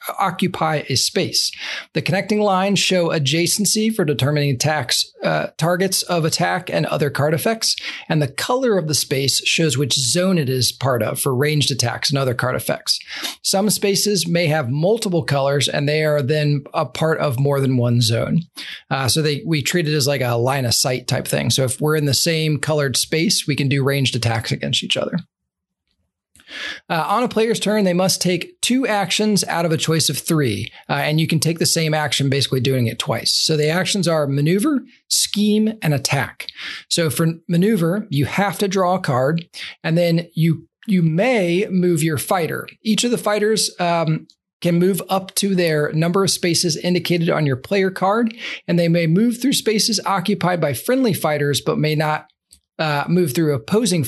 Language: English